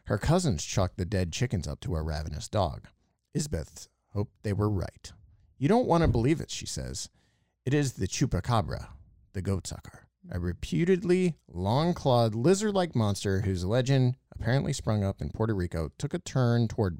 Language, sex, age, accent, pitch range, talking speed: English, male, 40-59, American, 95-130 Hz, 170 wpm